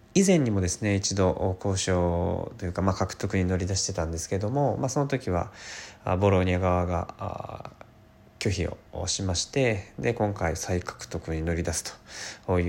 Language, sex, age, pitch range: Japanese, male, 20-39, 90-110 Hz